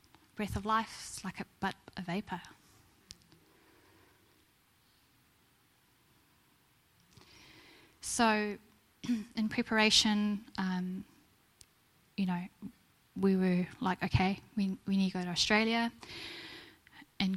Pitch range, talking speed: 190-230 Hz, 95 wpm